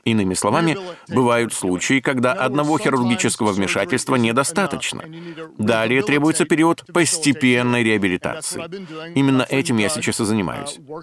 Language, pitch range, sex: Russian, 115-145 Hz, male